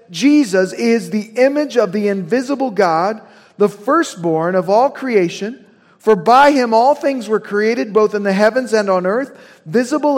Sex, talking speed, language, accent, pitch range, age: male, 165 wpm, English, American, 190-245 Hz, 50-69